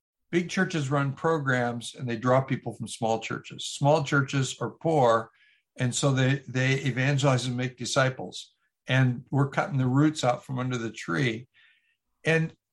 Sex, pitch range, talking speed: male, 125-150 Hz, 160 wpm